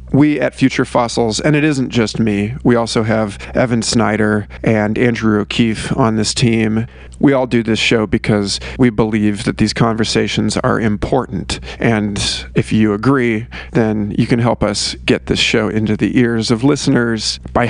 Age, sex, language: 40-59, male, English